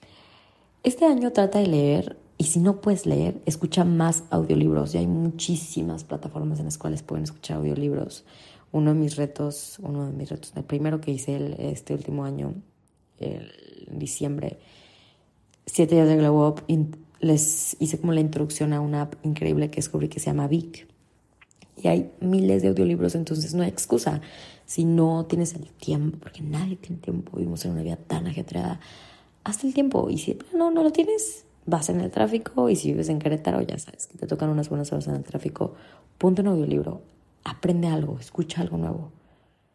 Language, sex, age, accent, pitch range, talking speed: Spanish, female, 20-39, Mexican, 105-165 Hz, 185 wpm